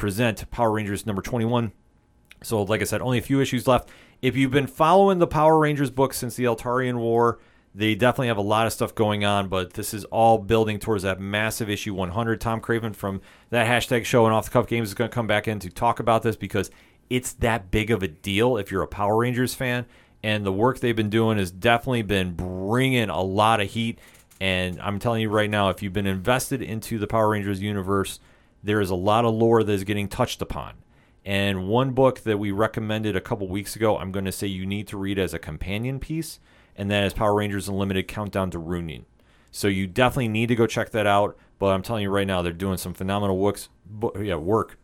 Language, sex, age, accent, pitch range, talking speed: English, male, 30-49, American, 100-120 Hz, 230 wpm